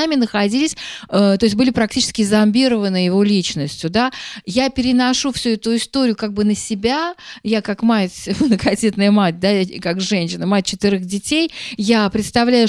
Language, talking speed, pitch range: Russian, 145 wpm, 205-240 Hz